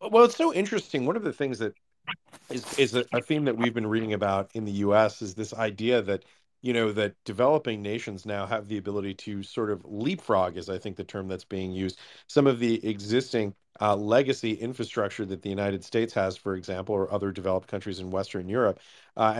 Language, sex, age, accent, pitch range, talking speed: English, male, 40-59, American, 100-115 Hz, 215 wpm